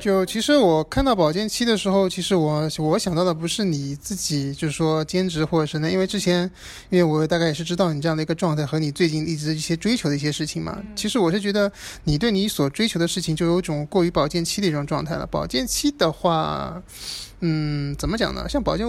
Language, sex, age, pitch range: Chinese, male, 20-39, 160-205 Hz